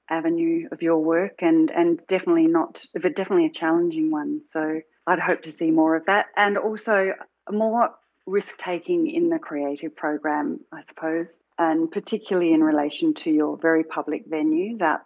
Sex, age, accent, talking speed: female, 40-59, Australian, 165 wpm